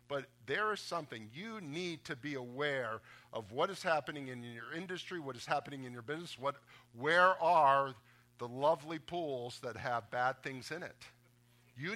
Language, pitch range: English, 125-185 Hz